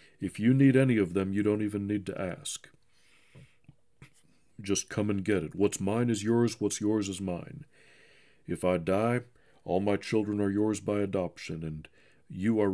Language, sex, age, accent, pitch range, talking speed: English, male, 50-69, American, 95-115 Hz, 180 wpm